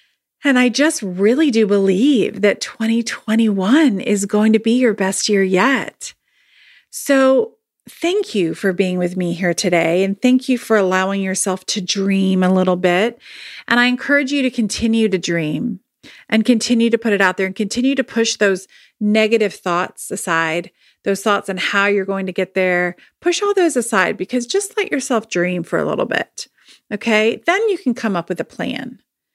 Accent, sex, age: American, female, 40-59